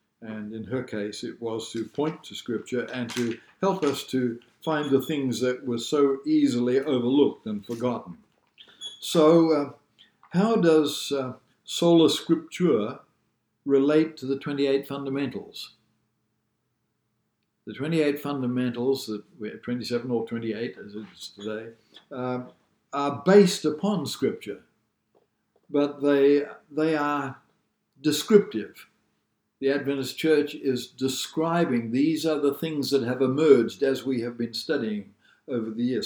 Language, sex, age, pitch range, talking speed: English, male, 60-79, 115-145 Hz, 130 wpm